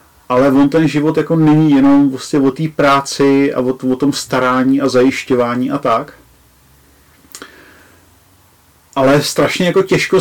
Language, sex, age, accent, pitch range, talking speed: Czech, male, 40-59, native, 130-160 Hz, 140 wpm